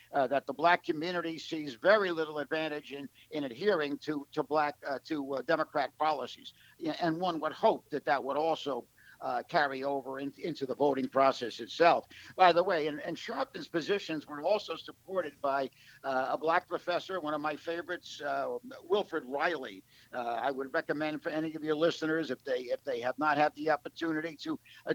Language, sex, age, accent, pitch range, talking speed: English, male, 60-79, American, 145-175 Hz, 190 wpm